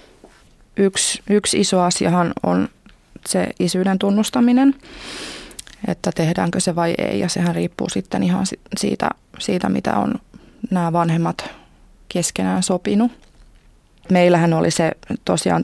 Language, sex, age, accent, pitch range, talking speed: Finnish, female, 20-39, native, 160-205 Hz, 115 wpm